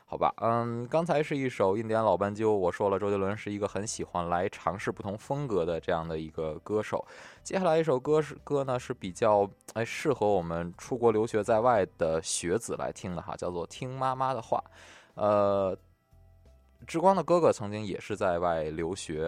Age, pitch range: 20-39, 85-115 Hz